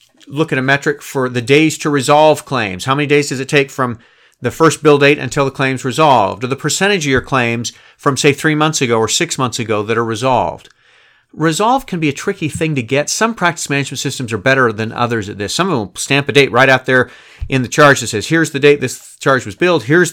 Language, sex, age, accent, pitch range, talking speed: English, male, 40-59, American, 120-150 Hz, 250 wpm